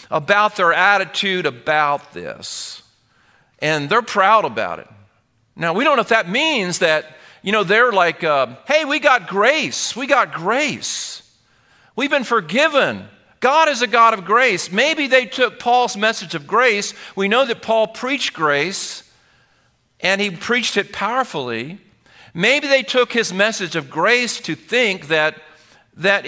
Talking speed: 155 wpm